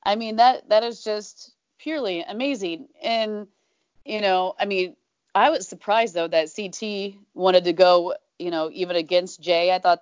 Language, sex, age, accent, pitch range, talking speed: English, female, 30-49, American, 180-230 Hz, 175 wpm